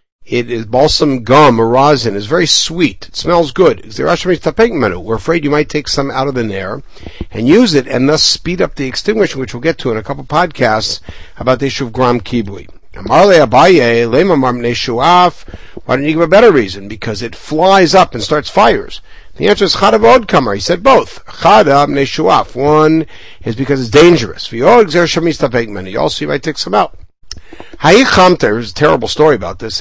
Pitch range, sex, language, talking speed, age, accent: 115-170 Hz, male, English, 180 wpm, 60-79, American